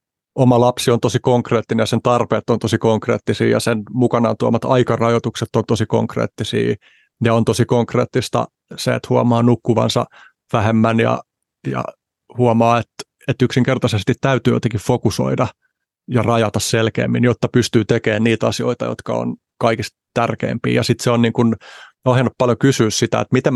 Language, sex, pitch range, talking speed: Finnish, male, 110-125 Hz, 155 wpm